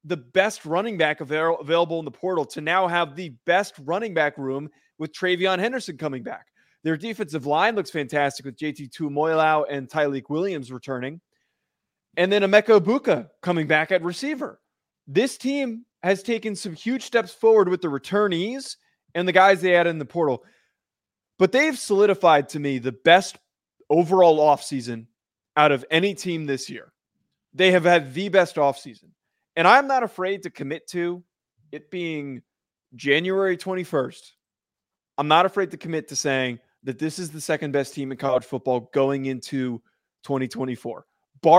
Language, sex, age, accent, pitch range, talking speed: English, male, 20-39, American, 140-190 Hz, 160 wpm